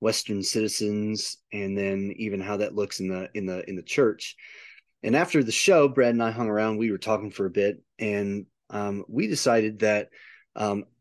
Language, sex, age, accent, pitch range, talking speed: English, male, 30-49, American, 105-115 Hz, 195 wpm